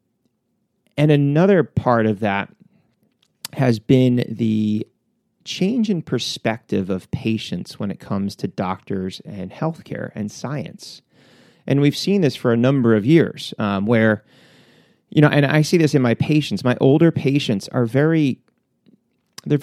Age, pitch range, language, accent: 30-49, 105-140 Hz, English, American